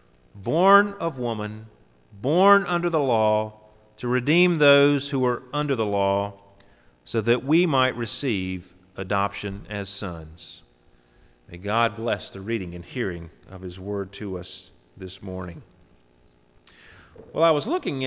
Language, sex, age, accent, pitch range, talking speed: English, male, 40-59, American, 90-130 Hz, 135 wpm